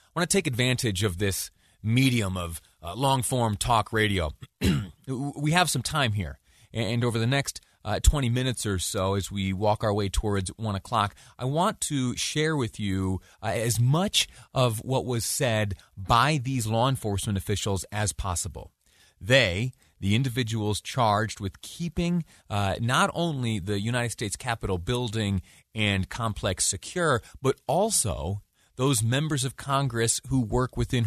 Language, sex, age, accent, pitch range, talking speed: English, male, 30-49, American, 95-125 Hz, 155 wpm